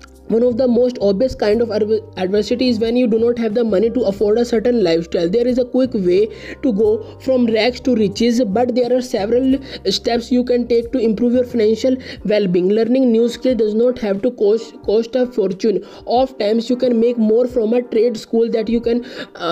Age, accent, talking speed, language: 20-39, Indian, 215 wpm, English